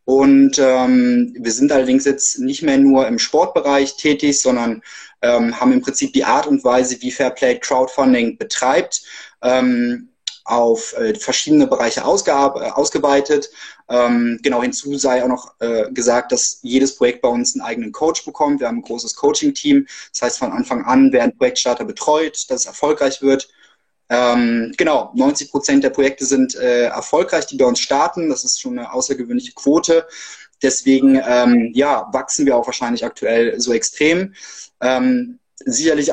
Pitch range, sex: 125-185 Hz, male